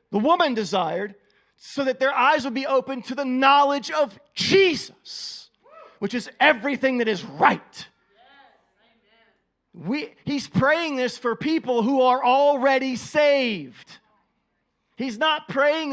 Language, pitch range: English, 185-270 Hz